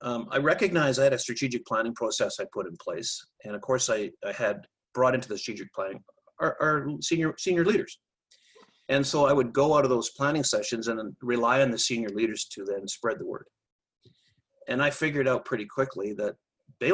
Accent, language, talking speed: American, English, 210 wpm